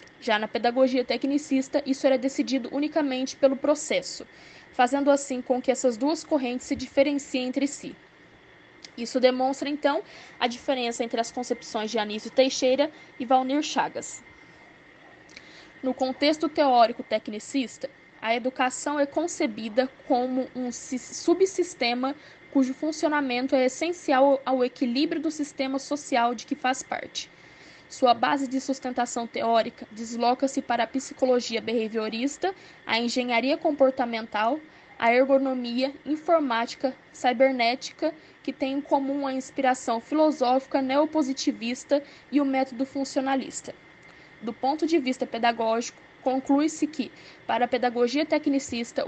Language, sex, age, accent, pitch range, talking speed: Portuguese, female, 10-29, Brazilian, 250-290 Hz, 120 wpm